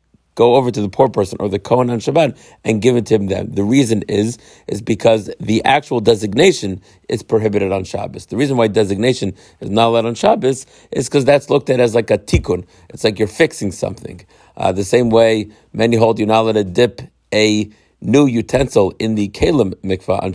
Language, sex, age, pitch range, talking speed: English, male, 50-69, 105-125 Hz, 210 wpm